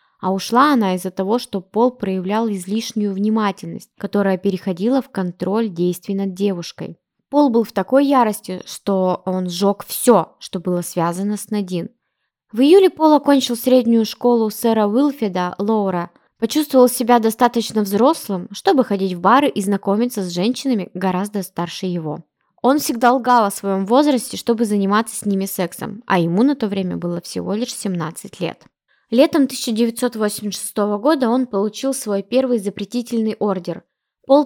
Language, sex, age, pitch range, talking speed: Russian, female, 20-39, 195-245 Hz, 150 wpm